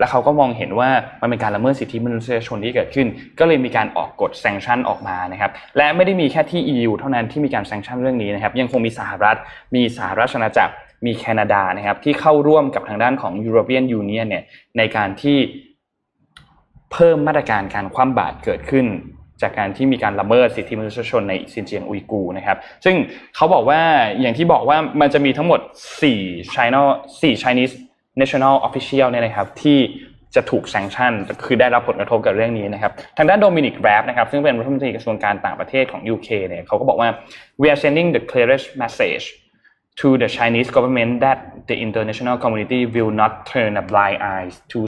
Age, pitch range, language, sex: 20-39, 110-140 Hz, Thai, male